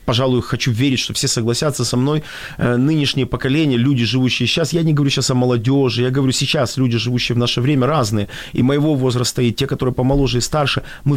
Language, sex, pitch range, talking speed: Ukrainian, male, 125-140 Hz, 205 wpm